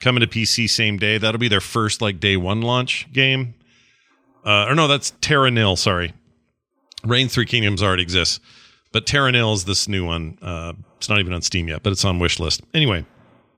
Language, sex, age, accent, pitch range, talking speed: English, male, 40-59, American, 95-125 Hz, 205 wpm